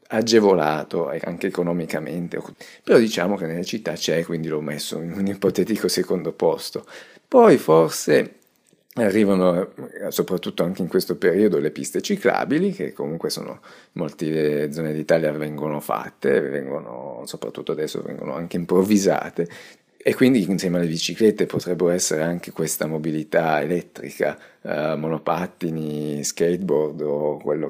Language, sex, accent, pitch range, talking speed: Italian, male, native, 80-90 Hz, 125 wpm